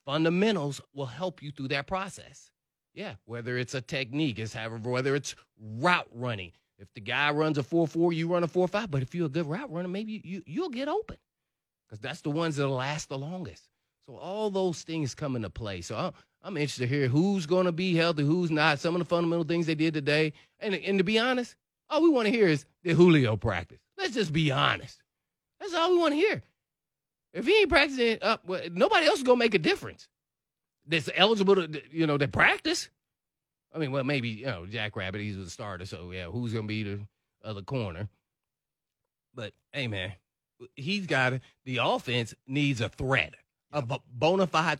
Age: 30-49